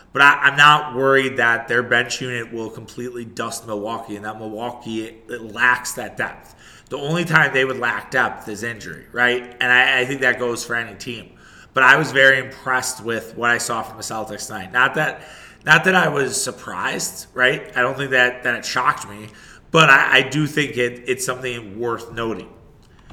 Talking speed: 205 wpm